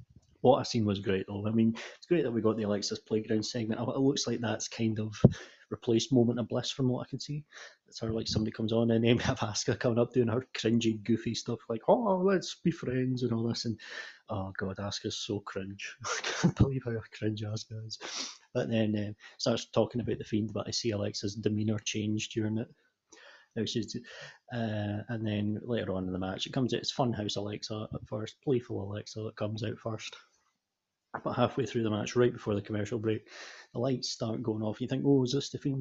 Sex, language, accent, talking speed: male, English, British, 225 wpm